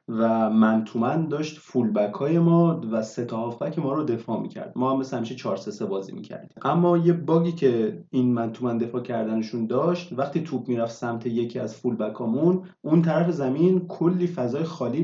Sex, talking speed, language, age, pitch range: male, 170 wpm, Persian, 30-49, 120-165 Hz